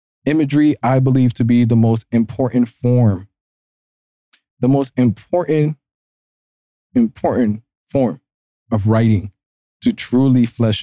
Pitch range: 105-130 Hz